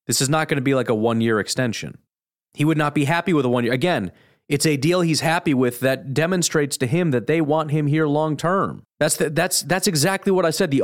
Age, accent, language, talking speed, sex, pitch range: 30-49, American, English, 245 wpm, male, 120-155 Hz